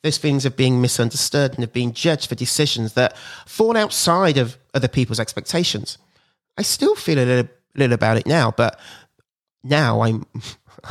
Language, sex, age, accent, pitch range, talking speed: English, male, 30-49, British, 115-150 Hz, 165 wpm